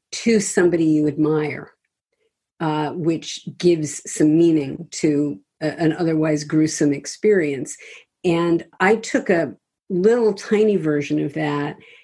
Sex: female